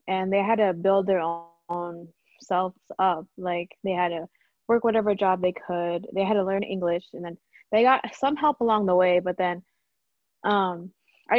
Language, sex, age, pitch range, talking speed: English, female, 20-39, 175-210 Hz, 185 wpm